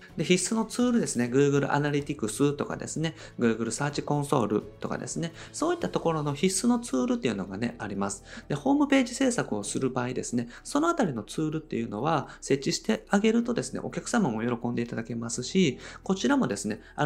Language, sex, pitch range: Japanese, male, 115-190 Hz